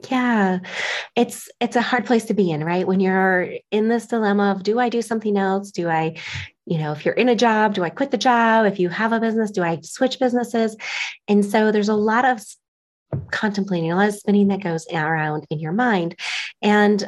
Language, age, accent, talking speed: English, 30-49, American, 220 wpm